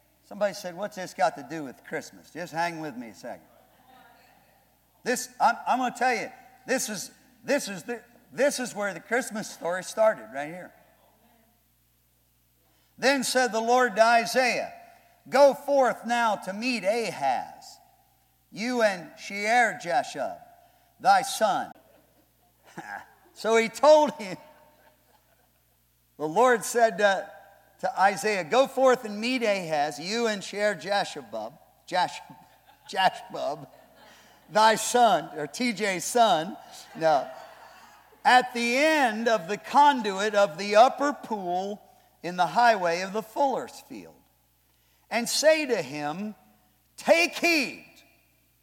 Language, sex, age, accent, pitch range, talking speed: English, male, 50-69, American, 190-260 Hz, 125 wpm